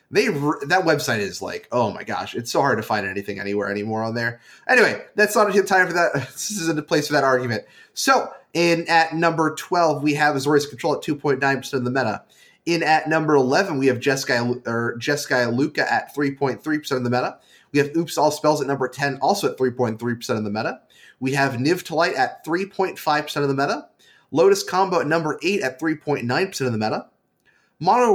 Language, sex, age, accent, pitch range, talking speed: English, male, 30-49, American, 135-165 Hz, 205 wpm